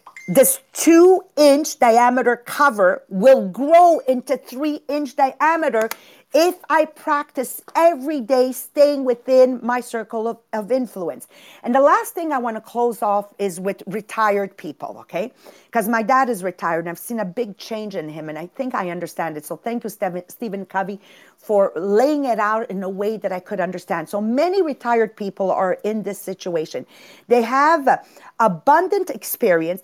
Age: 50-69